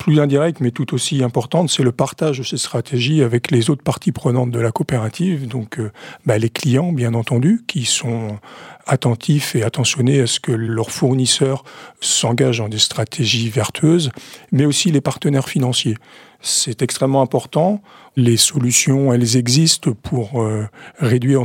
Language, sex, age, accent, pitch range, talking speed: French, male, 50-69, French, 120-150 Hz, 155 wpm